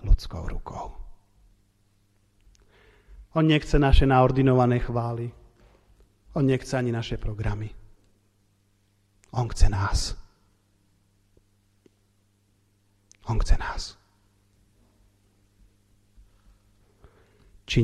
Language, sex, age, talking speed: Slovak, male, 40-59, 65 wpm